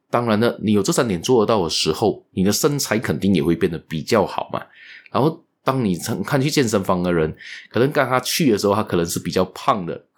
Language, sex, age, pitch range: Chinese, male, 20-39, 95-145 Hz